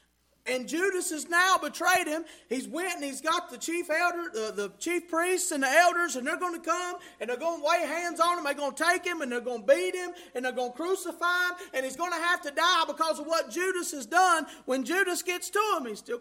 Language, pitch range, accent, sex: English, 280-350 Hz, American, male